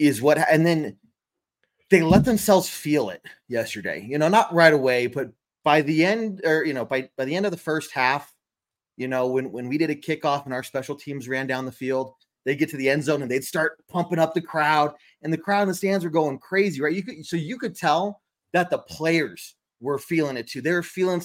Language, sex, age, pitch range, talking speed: English, male, 30-49, 120-165 Hz, 235 wpm